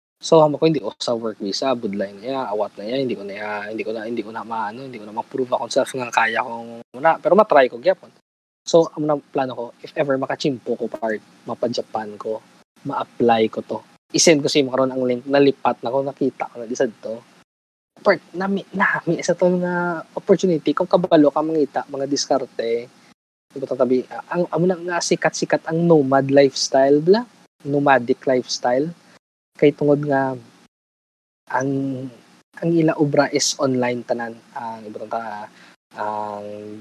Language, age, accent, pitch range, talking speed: Filipino, 20-39, native, 115-150 Hz, 180 wpm